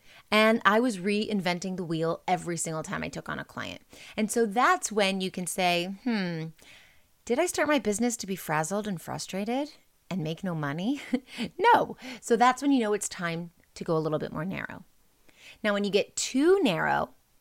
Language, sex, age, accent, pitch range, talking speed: English, female, 30-49, American, 180-250 Hz, 195 wpm